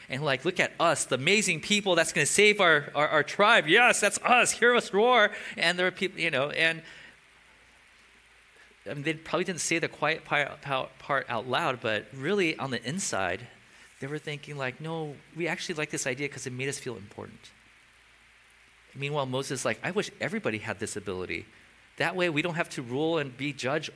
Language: English